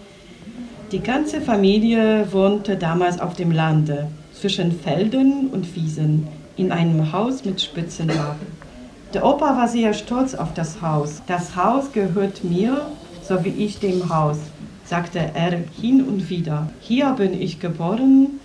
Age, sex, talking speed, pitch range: 40-59, female, 140 wpm, 165-210 Hz